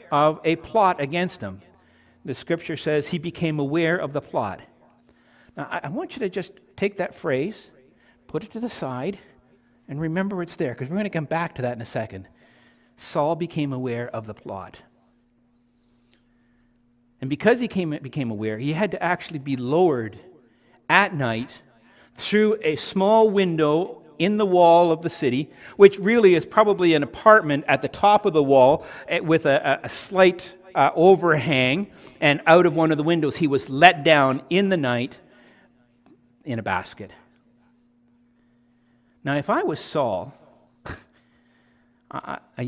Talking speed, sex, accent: 160 wpm, male, American